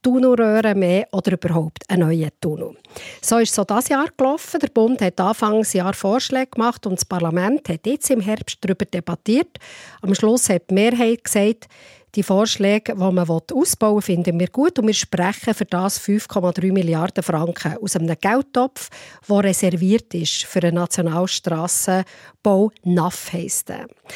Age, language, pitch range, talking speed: 50-69, German, 185-230 Hz, 145 wpm